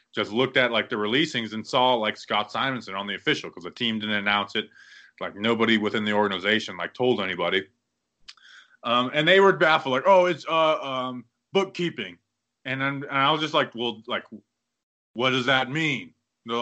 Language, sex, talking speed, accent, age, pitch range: English, male, 190 wpm, American, 20-39, 105-140 Hz